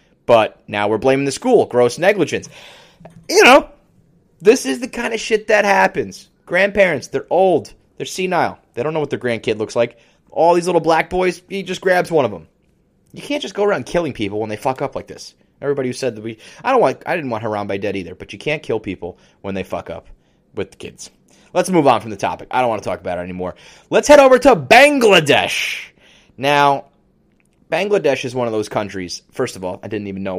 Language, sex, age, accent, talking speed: English, male, 30-49, American, 225 wpm